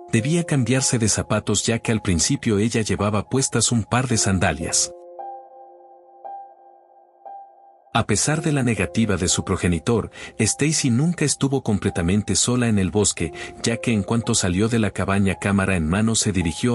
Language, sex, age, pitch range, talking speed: Spanish, male, 50-69, 95-130 Hz, 160 wpm